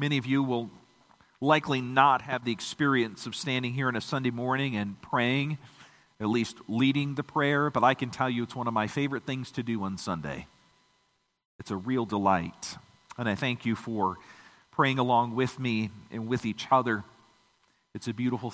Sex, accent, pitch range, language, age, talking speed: male, American, 120-155 Hz, English, 40-59, 190 wpm